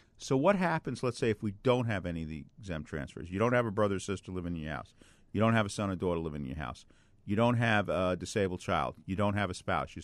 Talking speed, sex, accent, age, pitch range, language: 285 wpm, male, American, 50-69, 90-115 Hz, English